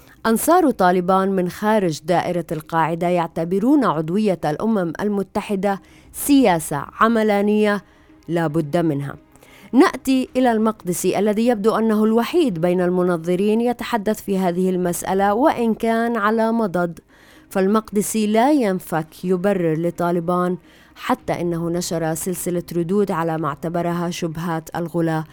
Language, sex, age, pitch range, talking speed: Arabic, female, 30-49, 160-200 Hz, 110 wpm